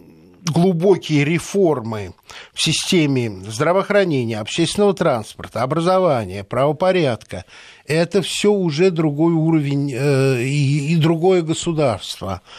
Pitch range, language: 125-170 Hz, Russian